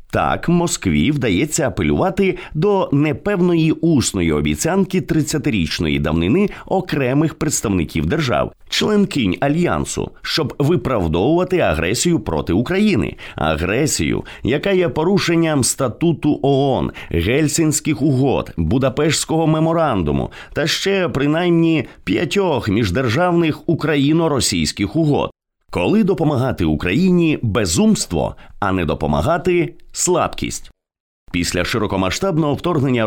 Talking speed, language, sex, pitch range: 90 wpm, English, male, 110-170 Hz